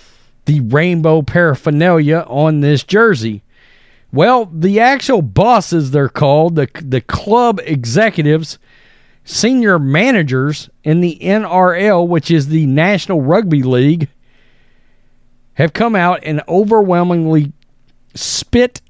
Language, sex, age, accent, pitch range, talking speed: English, male, 40-59, American, 150-220 Hz, 105 wpm